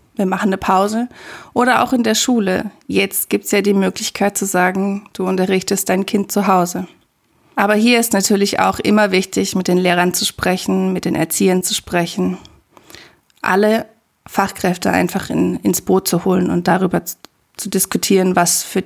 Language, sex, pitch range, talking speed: German, female, 185-225 Hz, 175 wpm